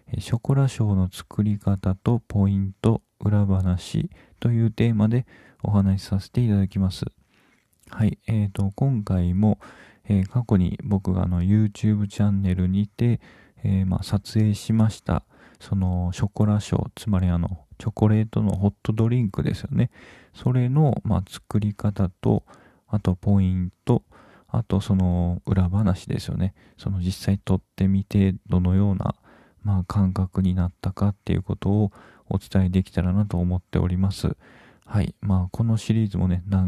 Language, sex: Japanese, male